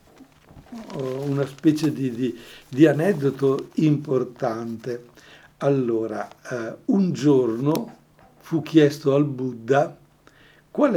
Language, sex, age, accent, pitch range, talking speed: Italian, male, 60-79, native, 130-155 Hz, 80 wpm